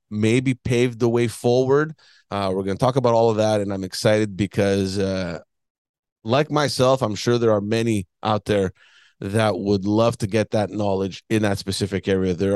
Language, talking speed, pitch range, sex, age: English, 190 wpm, 100-115 Hz, male, 30-49